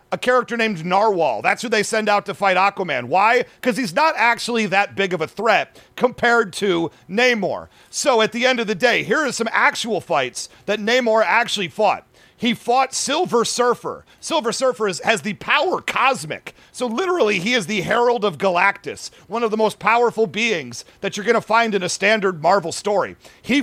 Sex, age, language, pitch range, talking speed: male, 40-59, English, 195-235 Hz, 195 wpm